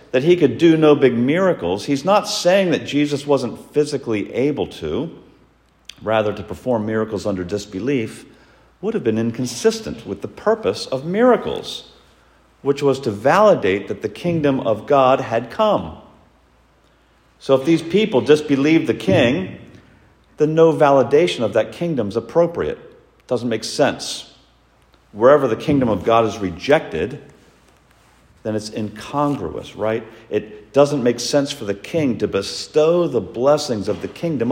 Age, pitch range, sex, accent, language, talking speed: 50-69, 100-150 Hz, male, American, English, 150 wpm